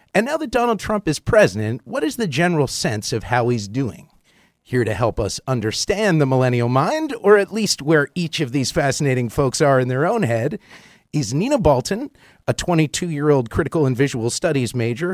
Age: 30-49